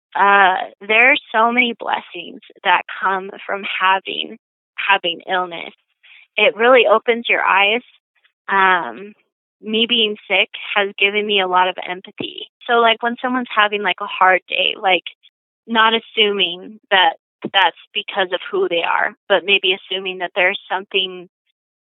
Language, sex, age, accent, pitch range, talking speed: English, female, 20-39, American, 195-220 Hz, 145 wpm